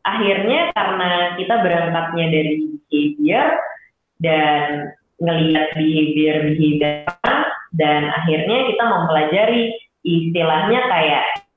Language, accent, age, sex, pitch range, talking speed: Indonesian, native, 20-39, female, 155-220 Hz, 80 wpm